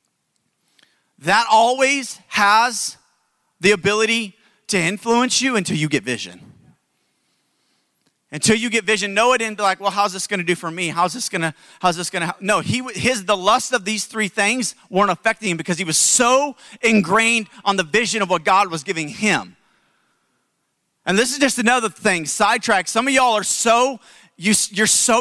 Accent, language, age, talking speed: American, English, 30-49, 185 wpm